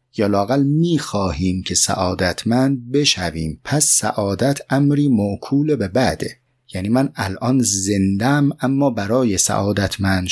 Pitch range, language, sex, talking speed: 95-130 Hz, Persian, male, 115 wpm